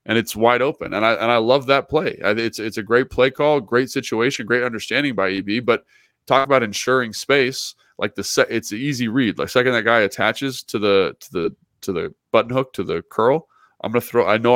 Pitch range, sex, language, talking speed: 100-130 Hz, male, English, 235 wpm